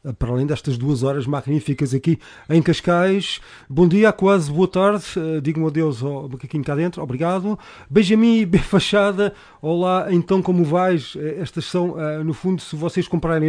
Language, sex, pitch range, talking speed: Portuguese, male, 145-180 Hz, 165 wpm